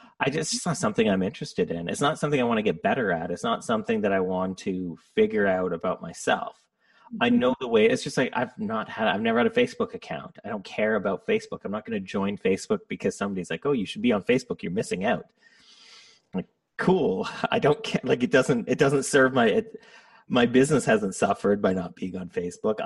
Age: 30-49